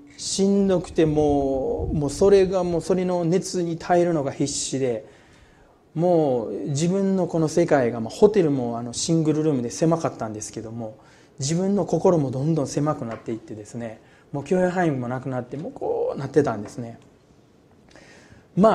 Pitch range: 125-175 Hz